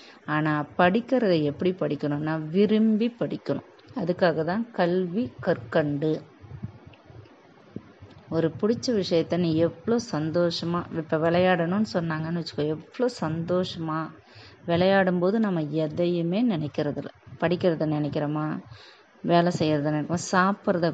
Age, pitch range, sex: 20-39, 155-190 Hz, female